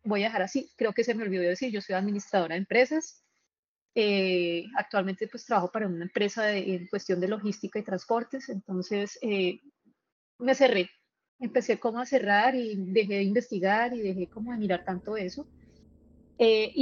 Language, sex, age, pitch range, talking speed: Spanish, female, 30-49, 195-245 Hz, 175 wpm